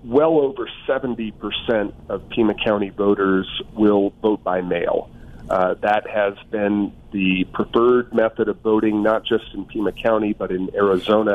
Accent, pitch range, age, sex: American, 100-120 Hz, 40-59, male